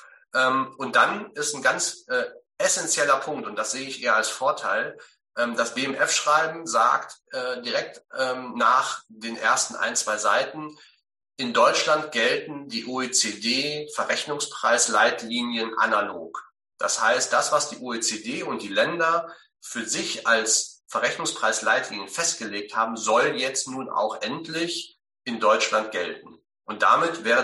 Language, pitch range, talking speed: German, 115-155 Hz, 120 wpm